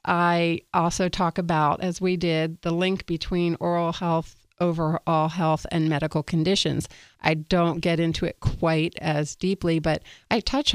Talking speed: 155 wpm